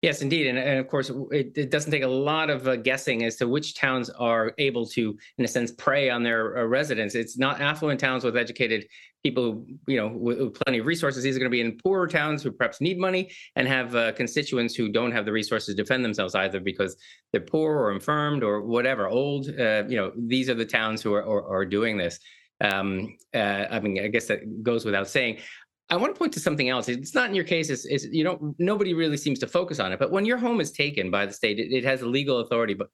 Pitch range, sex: 110-150 Hz, male